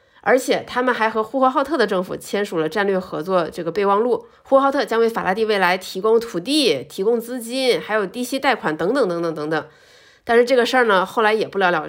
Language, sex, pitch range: Chinese, female, 180-260 Hz